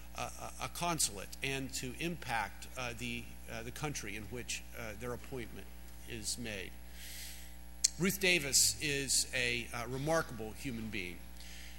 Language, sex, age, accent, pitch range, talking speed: English, male, 50-69, American, 105-150 Hz, 125 wpm